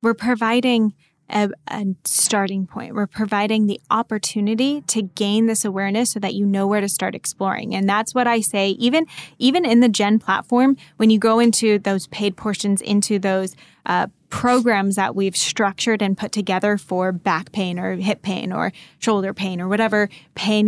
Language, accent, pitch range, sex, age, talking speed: English, American, 195-230 Hz, female, 10-29, 180 wpm